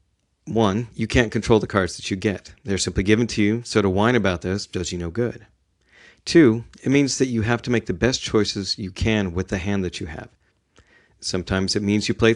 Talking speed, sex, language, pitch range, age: 230 wpm, male, English, 95-120 Hz, 40-59